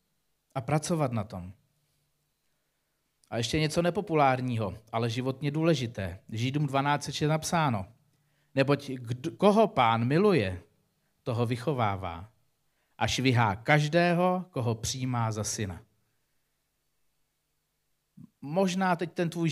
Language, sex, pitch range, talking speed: Czech, male, 120-155 Hz, 100 wpm